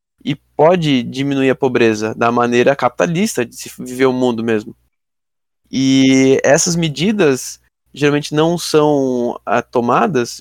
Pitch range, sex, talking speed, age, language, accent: 120-150 Hz, male, 120 wpm, 20-39, Portuguese, Brazilian